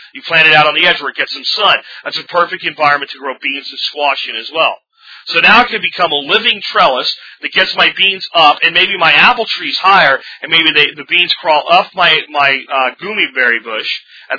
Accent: American